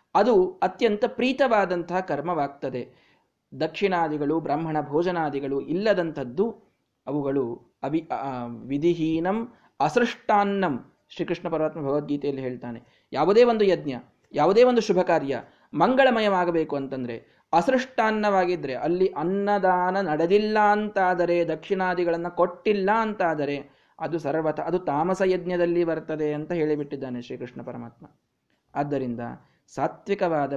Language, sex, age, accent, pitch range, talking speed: Kannada, male, 20-39, native, 135-190 Hz, 85 wpm